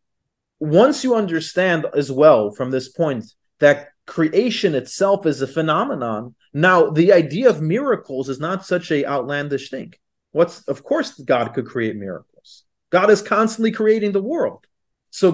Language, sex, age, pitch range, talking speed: English, male, 40-59, 145-200 Hz, 155 wpm